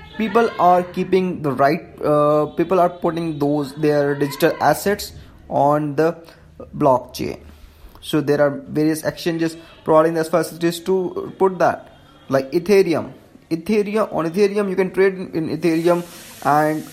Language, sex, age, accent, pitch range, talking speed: English, male, 20-39, Indian, 145-175 Hz, 135 wpm